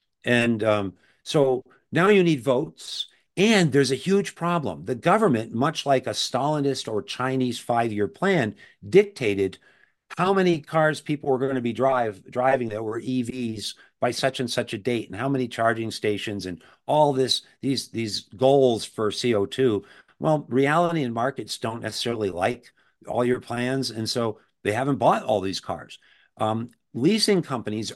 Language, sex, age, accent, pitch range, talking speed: English, male, 50-69, American, 110-140 Hz, 165 wpm